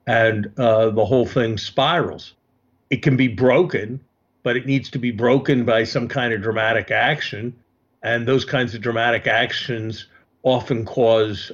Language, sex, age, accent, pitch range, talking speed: English, male, 50-69, American, 115-130 Hz, 155 wpm